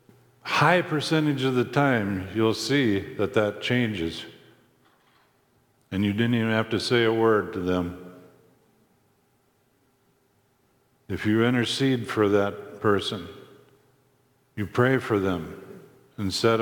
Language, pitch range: English, 95-125 Hz